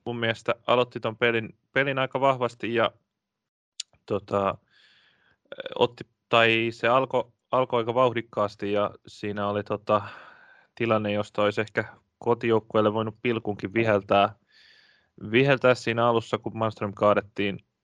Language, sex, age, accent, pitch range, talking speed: Finnish, male, 20-39, native, 100-115 Hz, 120 wpm